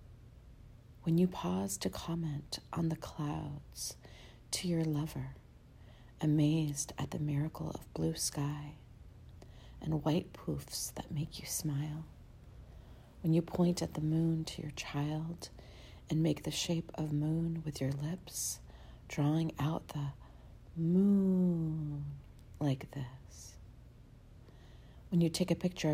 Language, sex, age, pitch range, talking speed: English, female, 40-59, 140-170 Hz, 125 wpm